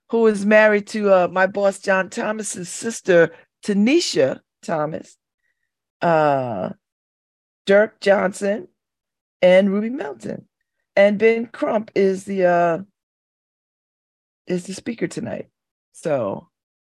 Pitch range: 160-215 Hz